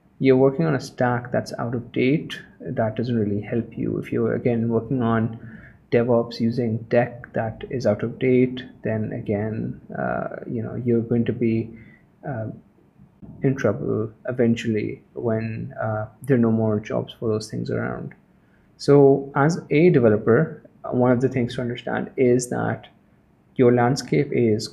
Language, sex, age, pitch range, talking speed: Urdu, male, 20-39, 115-130 Hz, 160 wpm